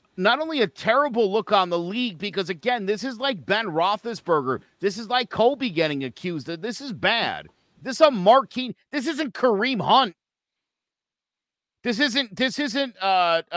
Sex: male